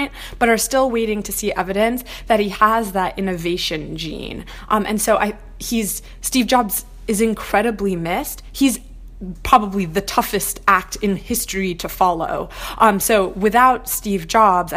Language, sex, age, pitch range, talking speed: English, female, 20-39, 175-215 Hz, 150 wpm